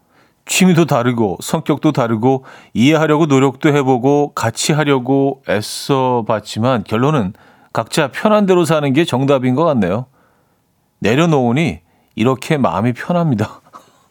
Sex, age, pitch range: male, 40-59, 110-145 Hz